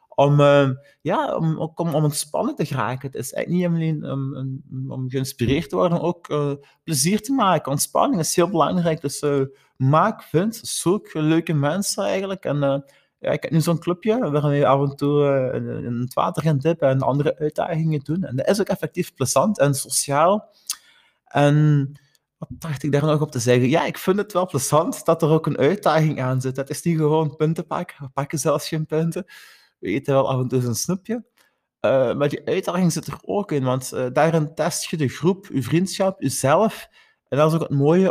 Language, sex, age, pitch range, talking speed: Dutch, male, 30-49, 135-170 Hz, 210 wpm